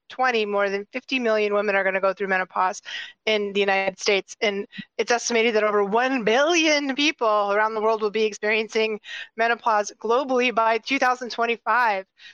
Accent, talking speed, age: American, 165 wpm, 30-49